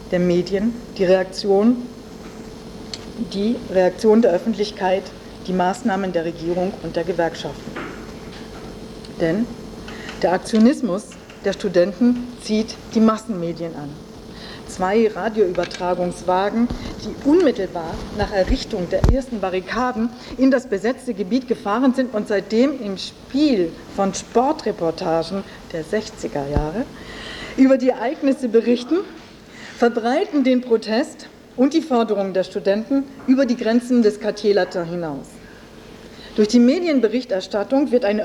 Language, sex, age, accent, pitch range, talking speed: German, female, 50-69, German, 185-245 Hz, 110 wpm